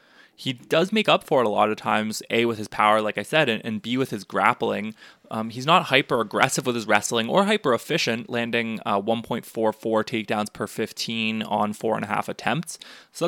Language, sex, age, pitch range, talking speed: English, male, 20-39, 110-140 Hz, 205 wpm